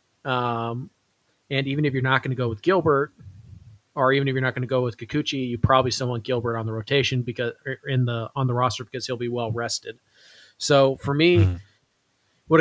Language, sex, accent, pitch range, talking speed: English, male, American, 120-145 Hz, 210 wpm